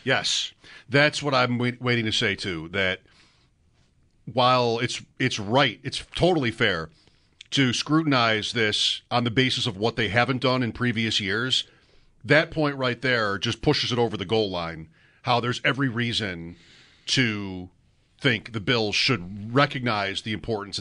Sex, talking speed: male, 155 wpm